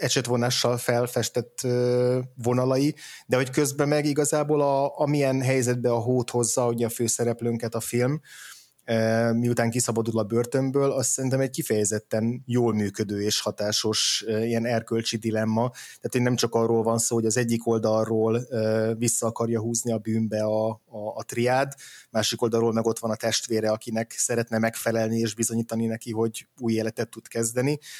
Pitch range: 110-125 Hz